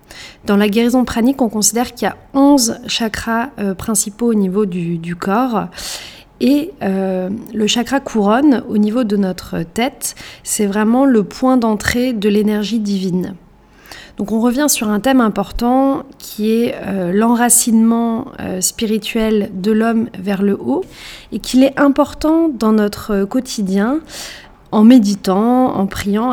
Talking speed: 145 wpm